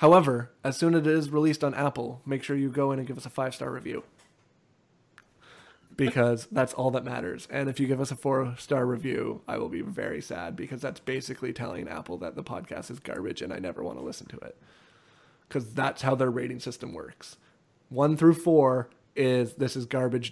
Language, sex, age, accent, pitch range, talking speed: English, male, 20-39, American, 135-155 Hz, 205 wpm